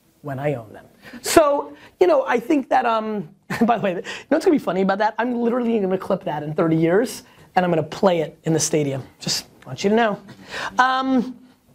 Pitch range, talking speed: 175-225 Hz, 225 wpm